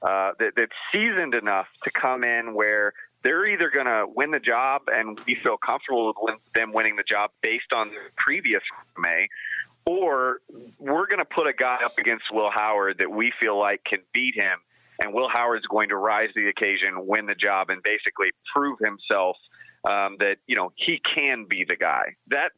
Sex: male